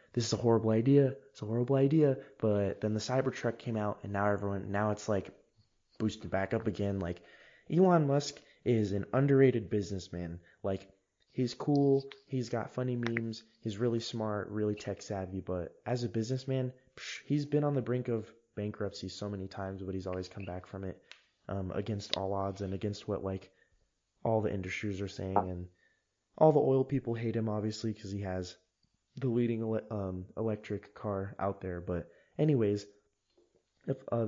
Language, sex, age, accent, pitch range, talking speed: English, male, 20-39, American, 95-125 Hz, 175 wpm